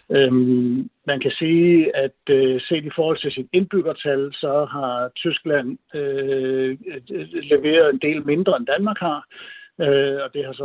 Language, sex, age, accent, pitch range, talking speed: Danish, male, 60-79, native, 130-170 Hz, 140 wpm